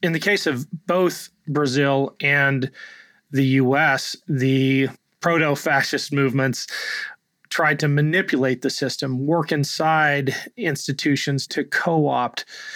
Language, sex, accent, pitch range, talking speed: English, male, American, 130-150 Hz, 105 wpm